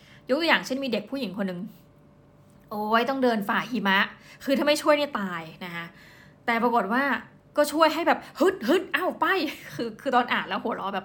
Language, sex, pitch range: Thai, female, 200-260 Hz